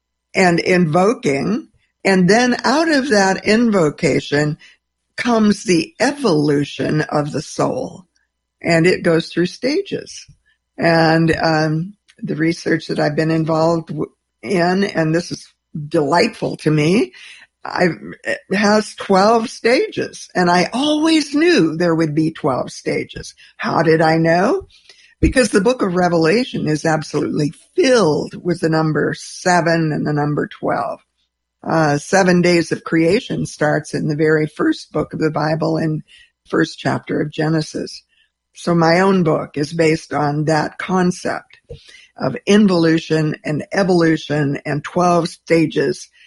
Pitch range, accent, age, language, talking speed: 155-205 Hz, American, 60-79, English, 135 wpm